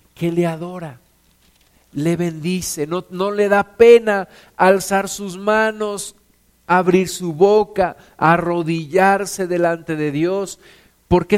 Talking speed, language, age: 110 wpm, Spanish, 50-69